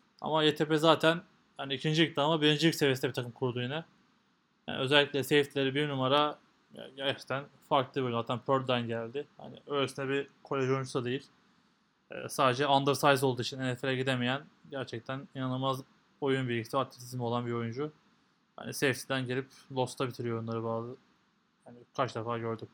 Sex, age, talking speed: male, 20-39, 145 wpm